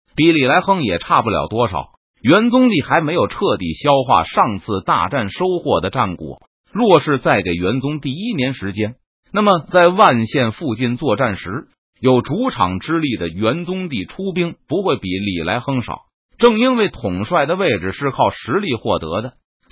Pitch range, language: 105-175 Hz, Chinese